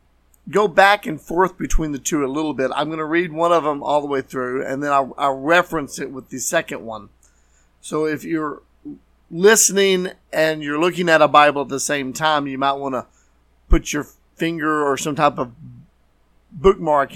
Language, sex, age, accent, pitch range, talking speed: English, male, 40-59, American, 125-165 Hz, 200 wpm